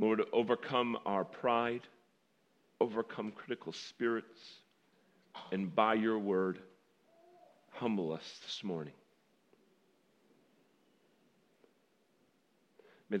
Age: 40-59